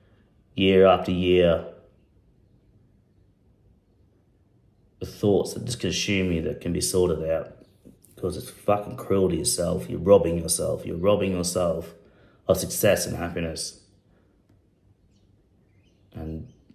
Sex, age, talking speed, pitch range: male, 30-49, 110 wpm, 90-105 Hz